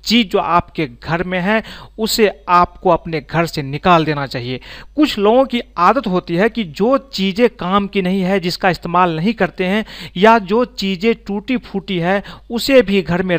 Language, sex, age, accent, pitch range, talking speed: Hindi, male, 40-59, native, 170-215 Hz, 190 wpm